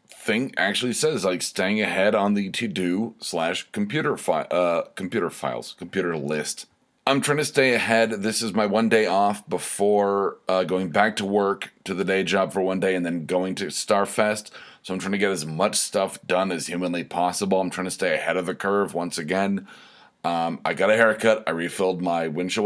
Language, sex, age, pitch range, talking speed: English, male, 30-49, 90-110 Hz, 205 wpm